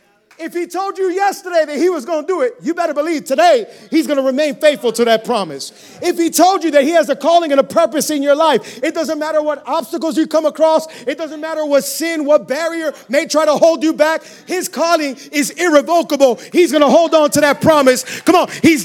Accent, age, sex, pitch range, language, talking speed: American, 40-59, male, 245-310 Hz, English, 240 wpm